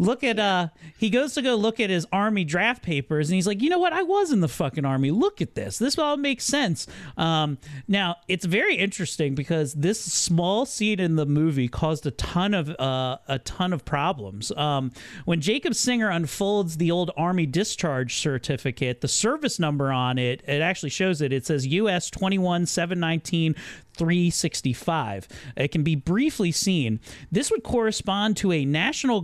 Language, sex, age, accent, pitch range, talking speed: English, male, 40-59, American, 150-210 Hz, 185 wpm